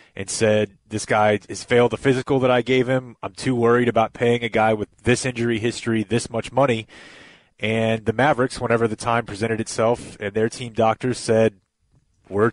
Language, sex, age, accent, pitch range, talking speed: English, male, 30-49, American, 110-130 Hz, 190 wpm